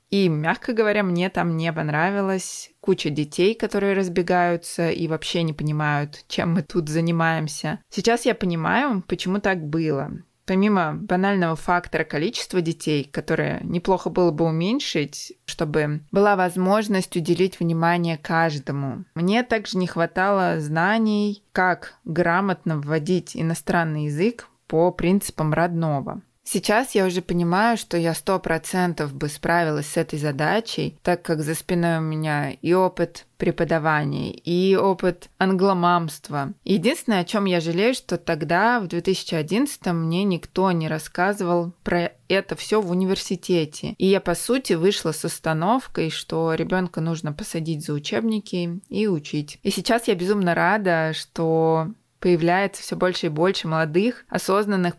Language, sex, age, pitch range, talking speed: Russian, female, 20-39, 160-195 Hz, 135 wpm